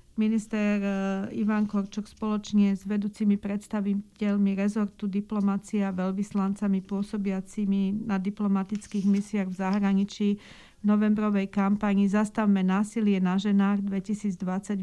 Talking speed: 100 wpm